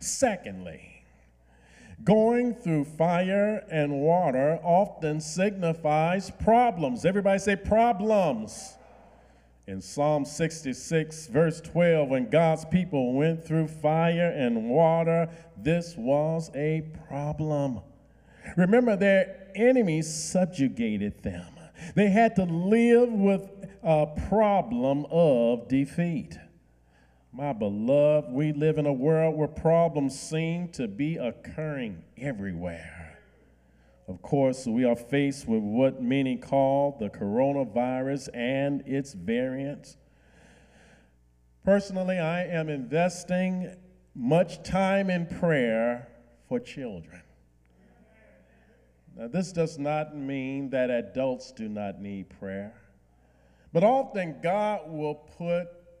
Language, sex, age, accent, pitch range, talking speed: English, male, 40-59, American, 125-175 Hz, 105 wpm